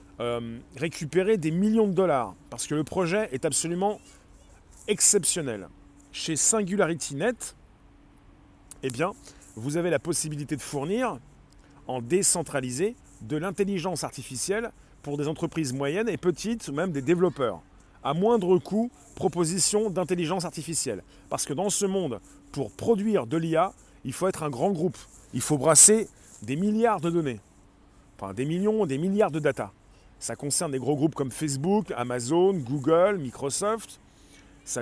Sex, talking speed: male, 145 wpm